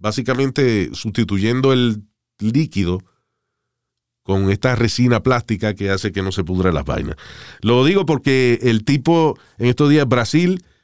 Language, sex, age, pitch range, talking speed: Spanish, male, 40-59, 110-140 Hz, 140 wpm